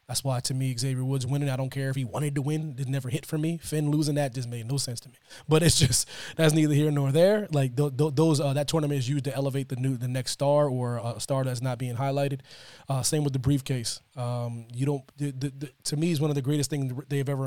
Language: English